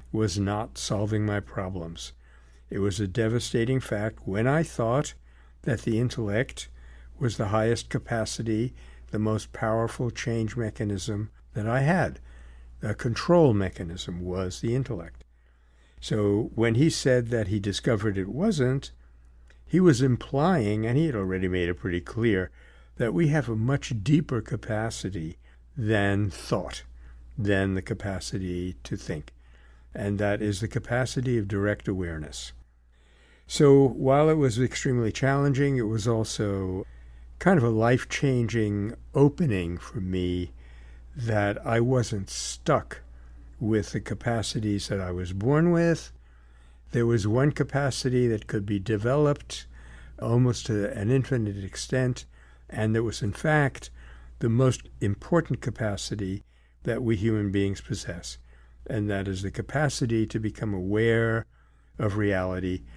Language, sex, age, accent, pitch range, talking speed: English, male, 60-79, American, 85-120 Hz, 135 wpm